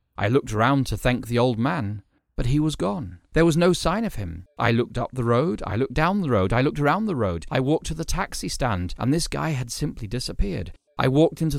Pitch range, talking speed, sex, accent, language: 95-135 Hz, 250 wpm, male, British, English